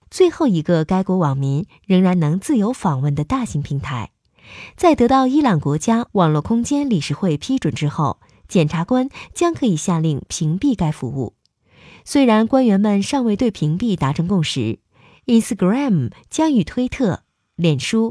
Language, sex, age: Chinese, female, 20-39